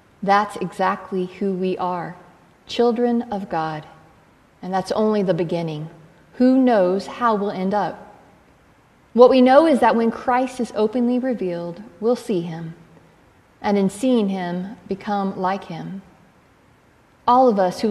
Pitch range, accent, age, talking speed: 185-235 Hz, American, 40-59, 145 wpm